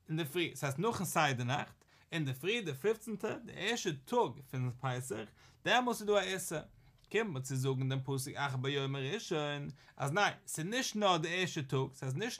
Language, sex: English, male